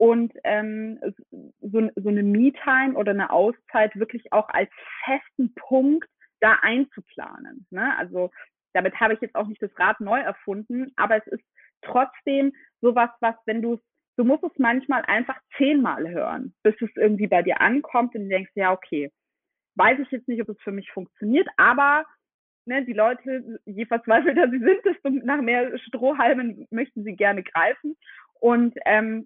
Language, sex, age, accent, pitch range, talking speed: German, female, 30-49, German, 205-260 Hz, 160 wpm